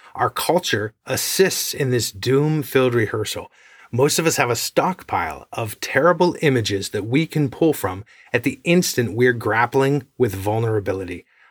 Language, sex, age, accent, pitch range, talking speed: English, male, 30-49, American, 110-145 Hz, 145 wpm